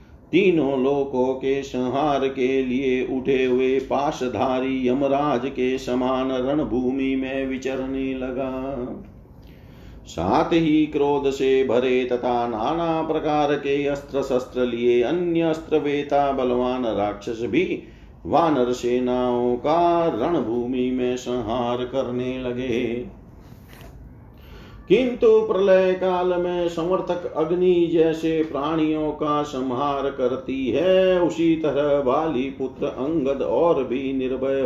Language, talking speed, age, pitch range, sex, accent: Hindi, 105 wpm, 40-59, 125-155 Hz, male, native